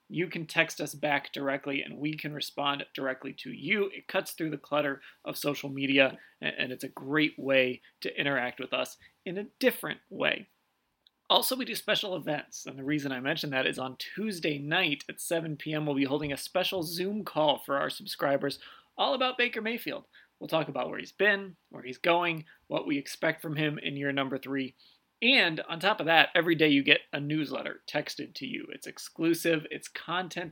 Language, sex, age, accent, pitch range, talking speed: English, male, 30-49, American, 140-190 Hz, 200 wpm